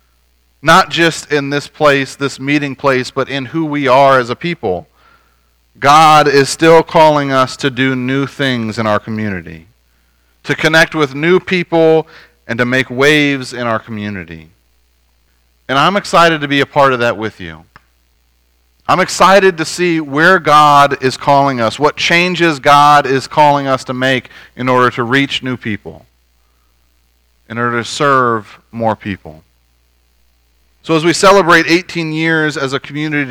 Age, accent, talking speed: 40-59, American, 160 wpm